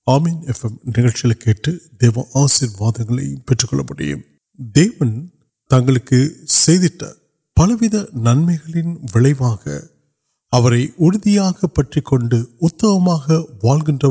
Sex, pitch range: male, 120-160 Hz